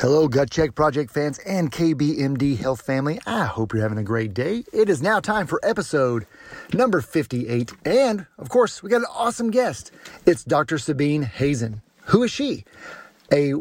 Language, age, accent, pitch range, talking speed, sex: English, 40-59, American, 120-170 Hz, 175 wpm, male